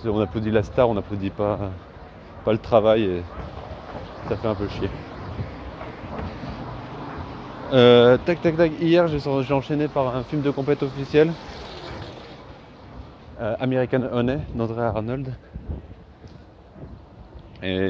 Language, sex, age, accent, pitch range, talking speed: French, male, 30-49, French, 95-120 Hz, 120 wpm